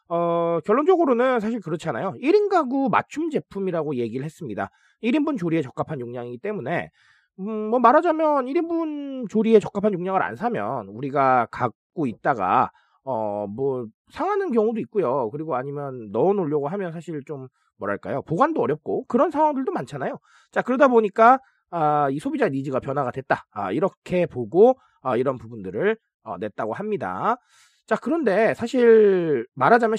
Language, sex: Korean, male